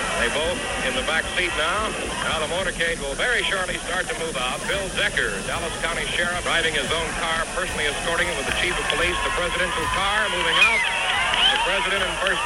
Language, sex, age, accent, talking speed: English, male, 60-79, American, 205 wpm